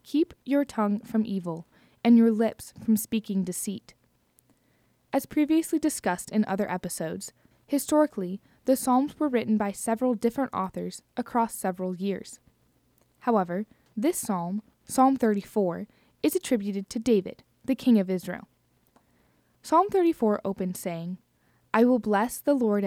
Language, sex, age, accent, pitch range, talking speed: English, female, 10-29, American, 190-245 Hz, 135 wpm